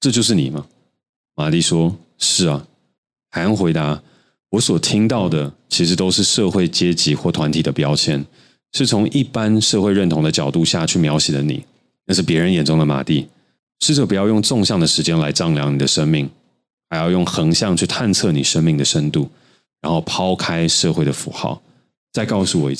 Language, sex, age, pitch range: Chinese, male, 30-49, 75-100 Hz